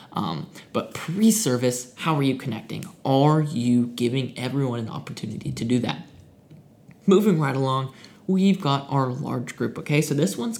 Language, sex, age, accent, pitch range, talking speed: English, male, 20-39, American, 125-165 Hz, 160 wpm